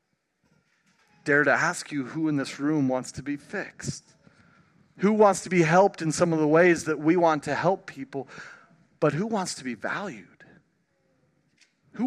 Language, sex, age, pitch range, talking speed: English, male, 40-59, 140-180 Hz, 175 wpm